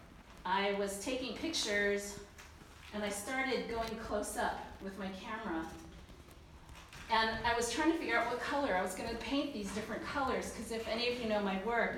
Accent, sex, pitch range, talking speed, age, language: American, female, 195-230 Hz, 185 wpm, 40-59, English